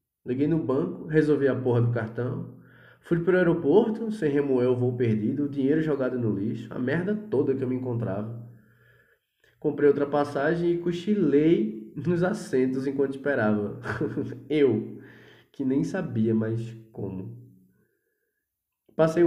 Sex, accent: male, Brazilian